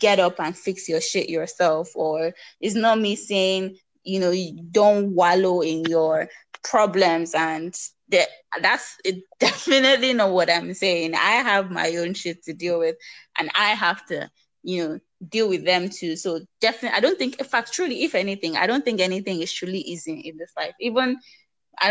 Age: 20-39